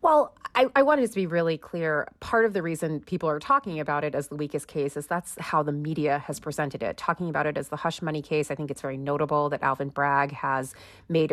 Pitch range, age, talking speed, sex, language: 150-185 Hz, 30-49, 250 wpm, female, English